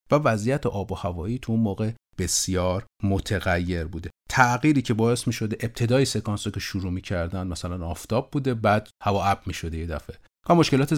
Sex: male